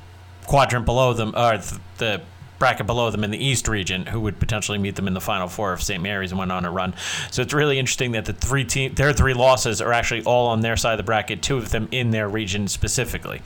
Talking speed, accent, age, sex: 250 wpm, American, 30-49, male